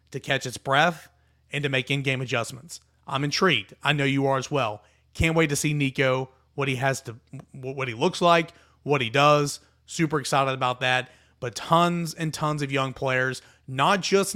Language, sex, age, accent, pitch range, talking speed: English, male, 30-49, American, 130-160 Hz, 190 wpm